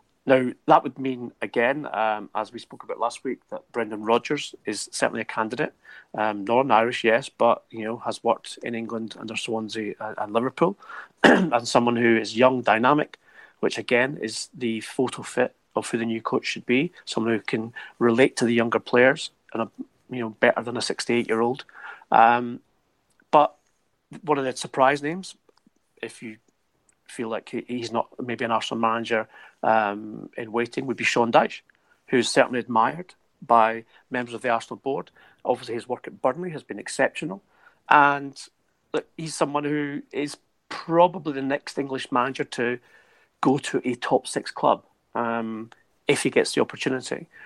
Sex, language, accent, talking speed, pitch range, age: male, English, British, 170 wpm, 115-135 Hz, 30-49